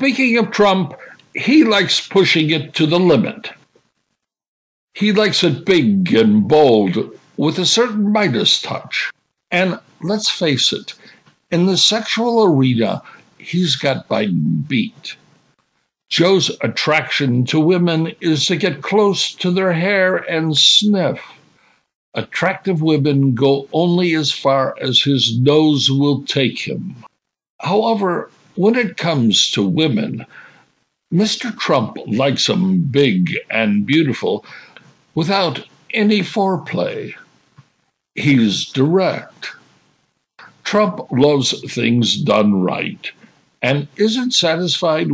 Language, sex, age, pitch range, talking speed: English, male, 60-79, 140-195 Hz, 110 wpm